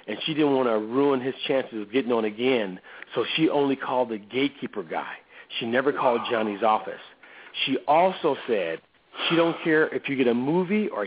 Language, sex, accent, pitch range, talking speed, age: English, male, American, 115-155 Hz, 195 wpm, 40-59